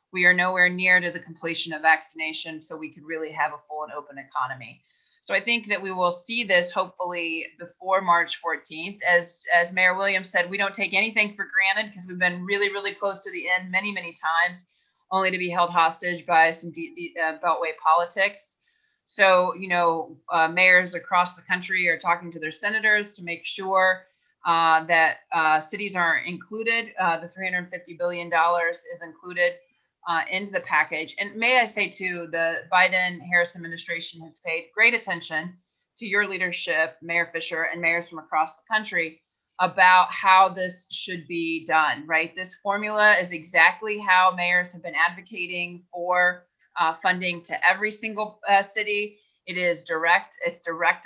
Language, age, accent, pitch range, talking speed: English, 30-49, American, 165-190 Hz, 175 wpm